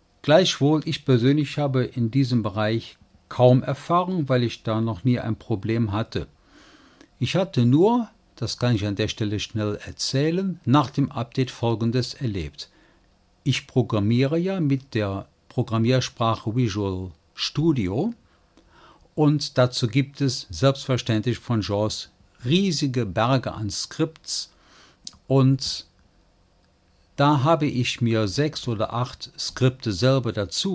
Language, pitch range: German, 105-140 Hz